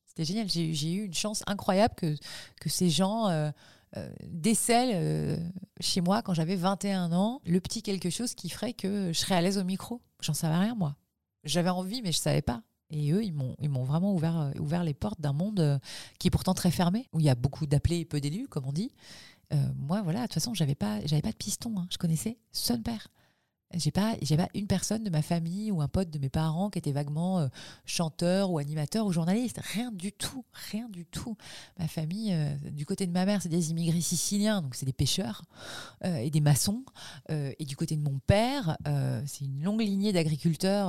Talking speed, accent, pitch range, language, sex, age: 235 wpm, French, 150-200 Hz, French, female, 30-49